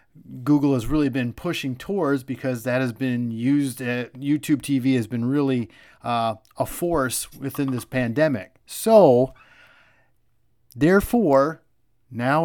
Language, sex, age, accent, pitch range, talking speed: English, male, 30-49, American, 125-150 Hz, 125 wpm